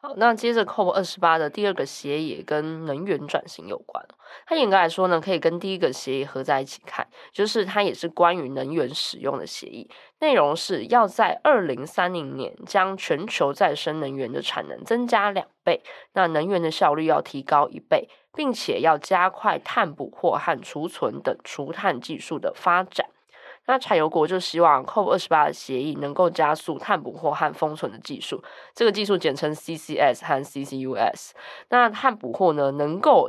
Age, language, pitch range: 20-39, Chinese, 155-220 Hz